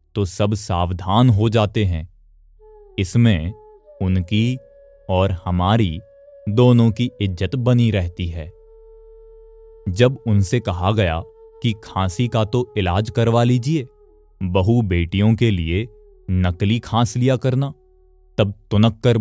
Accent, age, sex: native, 30-49, male